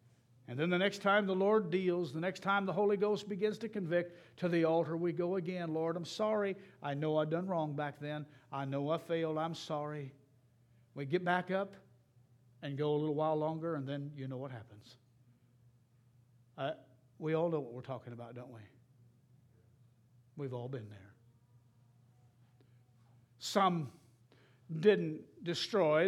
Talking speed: 165 wpm